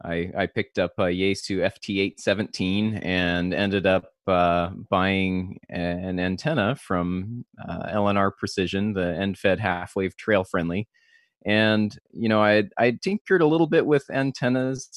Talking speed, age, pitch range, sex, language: 130 wpm, 20-39, 95-110 Hz, male, English